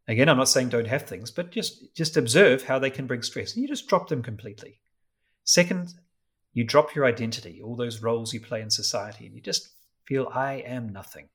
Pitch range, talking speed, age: 110-135 Hz, 215 wpm, 30-49